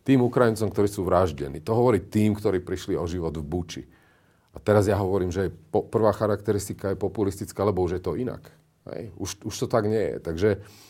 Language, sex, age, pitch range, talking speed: Slovak, male, 40-59, 90-110 Hz, 205 wpm